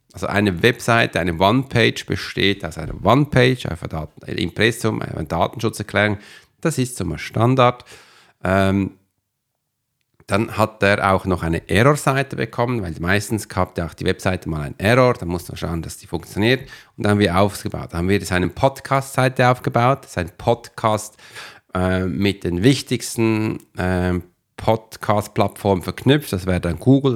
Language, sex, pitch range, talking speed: German, male, 95-125 Hz, 155 wpm